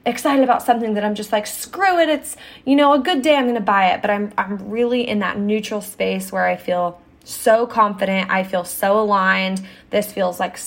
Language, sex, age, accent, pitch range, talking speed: English, female, 20-39, American, 185-230 Hz, 220 wpm